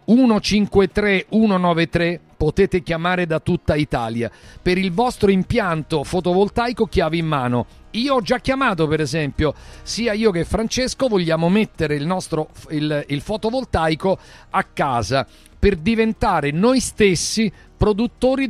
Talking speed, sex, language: 125 wpm, male, Italian